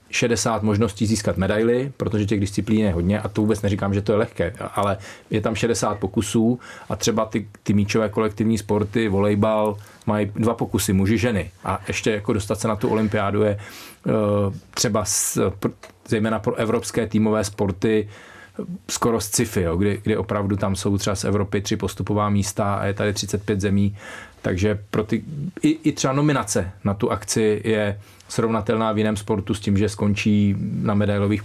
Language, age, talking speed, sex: Czech, 30-49, 165 wpm, male